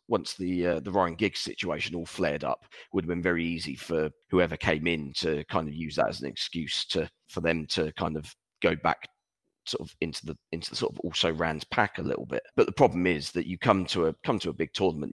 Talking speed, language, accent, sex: 255 wpm, English, British, male